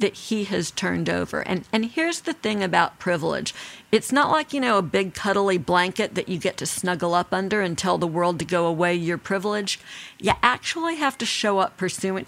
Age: 50-69